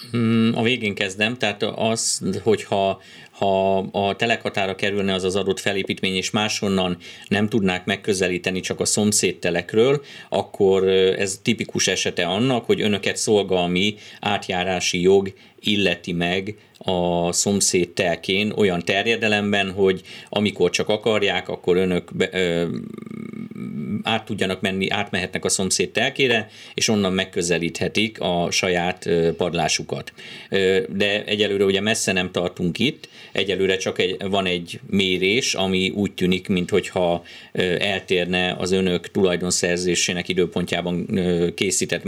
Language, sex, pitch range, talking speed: Hungarian, male, 90-105 Hz, 115 wpm